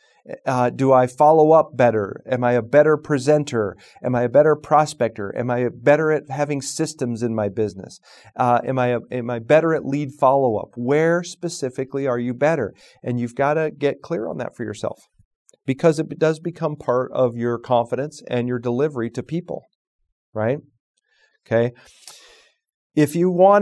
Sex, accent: male, American